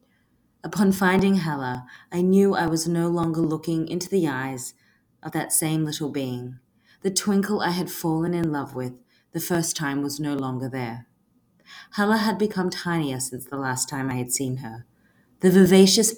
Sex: female